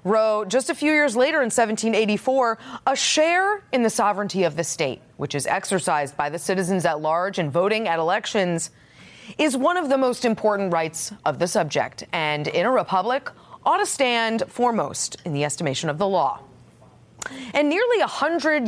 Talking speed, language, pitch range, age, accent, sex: 180 wpm, English, 180-275 Hz, 30-49, American, female